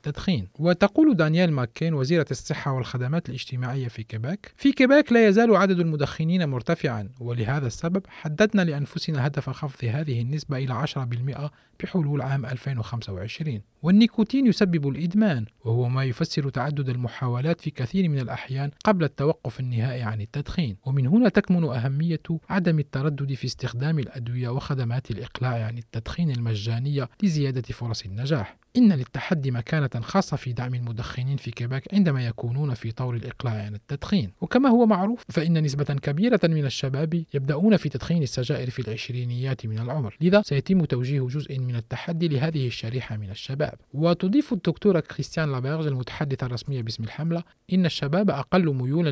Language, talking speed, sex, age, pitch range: Arabic, 145 wpm, male, 40-59, 125-165 Hz